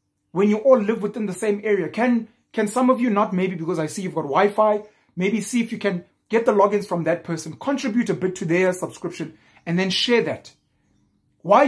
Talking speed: 220 wpm